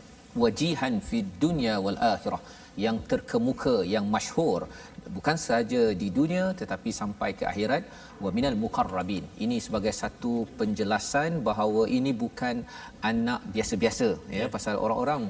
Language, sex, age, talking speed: Malayalam, male, 40-59, 125 wpm